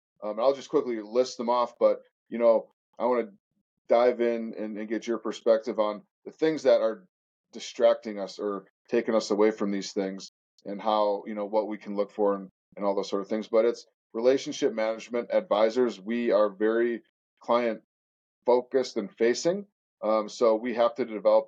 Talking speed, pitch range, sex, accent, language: 190 wpm, 105-120 Hz, male, American, English